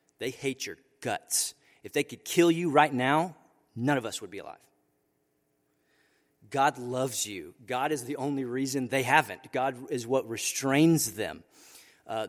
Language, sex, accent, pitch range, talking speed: English, male, American, 120-145 Hz, 160 wpm